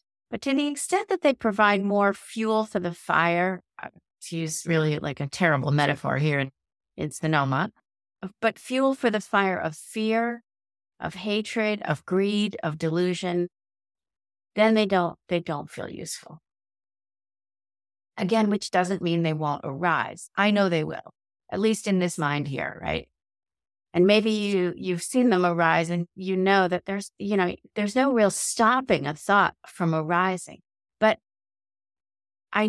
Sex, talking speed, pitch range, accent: female, 155 wpm, 150-210 Hz, American